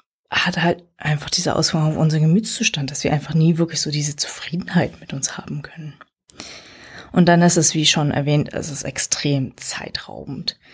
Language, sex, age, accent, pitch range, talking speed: German, female, 20-39, German, 145-180 Hz, 175 wpm